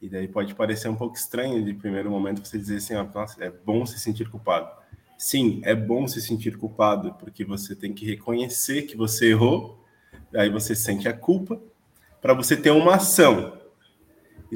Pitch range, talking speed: 105-150 Hz, 180 wpm